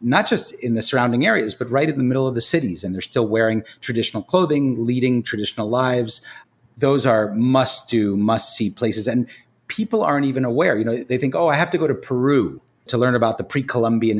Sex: male